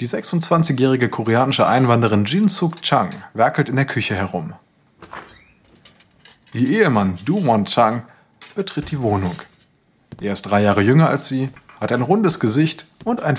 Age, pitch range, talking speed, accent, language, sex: 30-49, 115-170 Hz, 150 wpm, German, German, male